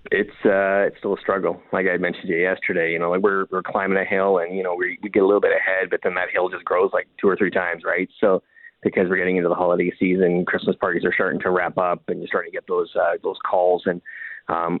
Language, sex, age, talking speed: English, male, 30-49, 275 wpm